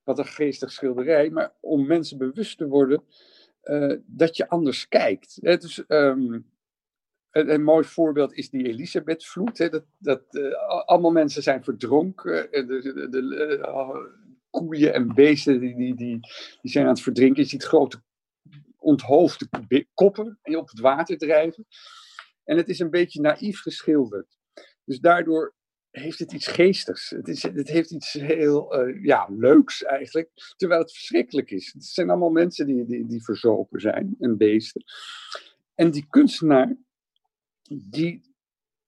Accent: Dutch